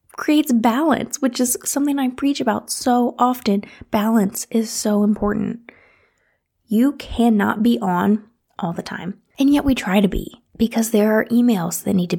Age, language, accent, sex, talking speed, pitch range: 20-39, English, American, female, 165 wpm, 195-240 Hz